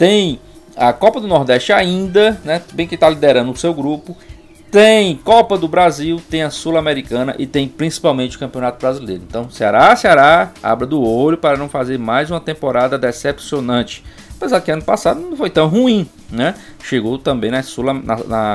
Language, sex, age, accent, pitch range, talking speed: Portuguese, male, 20-39, Brazilian, 125-185 Hz, 175 wpm